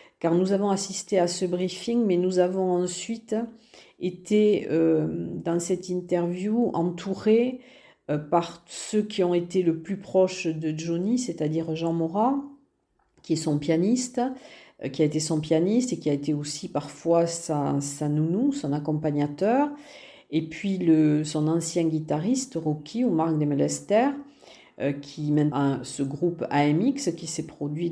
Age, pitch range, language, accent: 50-69, 165-205 Hz, French, French